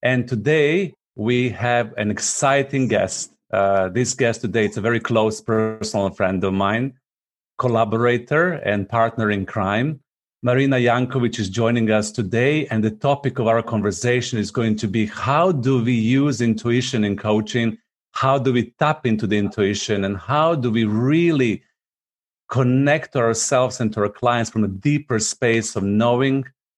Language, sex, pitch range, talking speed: English, male, 105-125 Hz, 160 wpm